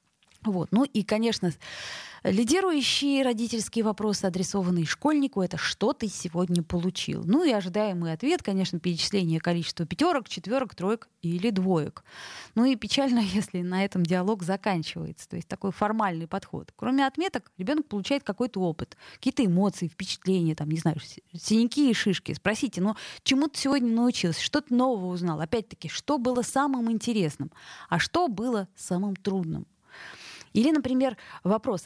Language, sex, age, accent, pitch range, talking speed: Russian, female, 20-39, native, 180-245 Hz, 150 wpm